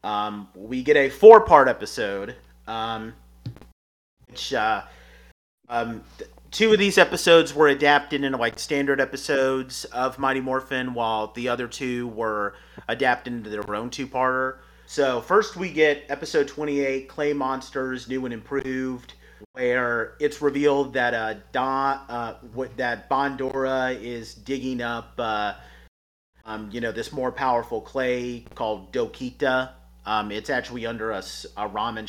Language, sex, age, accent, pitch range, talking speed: English, male, 30-49, American, 110-130 Hz, 140 wpm